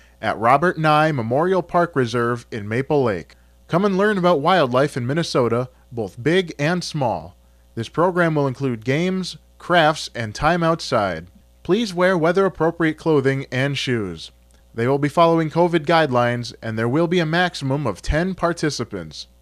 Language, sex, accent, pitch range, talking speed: English, male, American, 120-170 Hz, 155 wpm